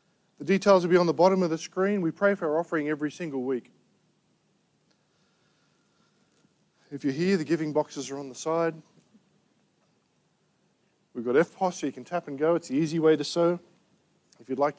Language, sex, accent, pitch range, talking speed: English, male, Australian, 150-195 Hz, 185 wpm